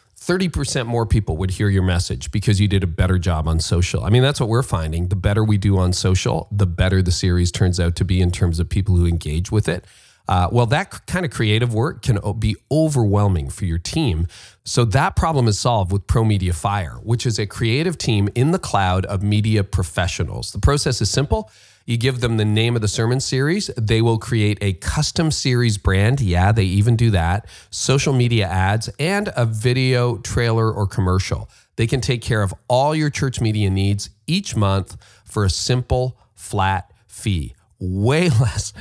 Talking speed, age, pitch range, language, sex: 195 wpm, 40-59, 95-120 Hz, English, male